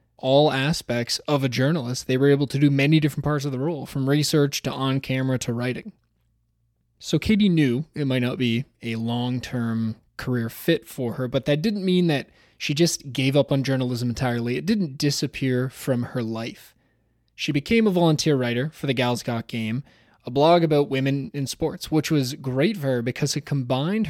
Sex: male